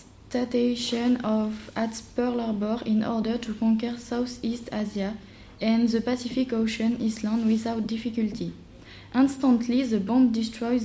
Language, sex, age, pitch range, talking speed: French, female, 20-39, 220-250 Hz, 110 wpm